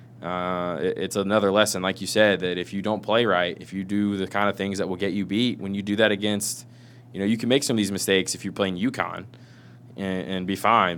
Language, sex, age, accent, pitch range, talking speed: English, male, 20-39, American, 95-110 Hz, 255 wpm